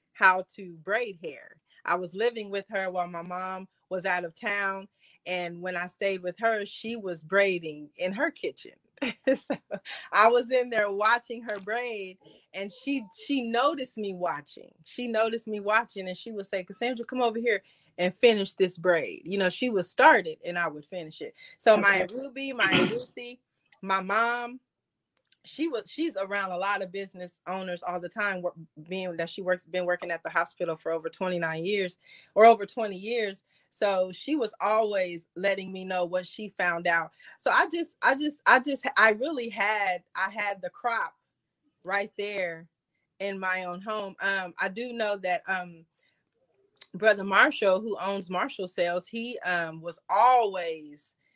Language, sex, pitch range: English, female, 180-225 Hz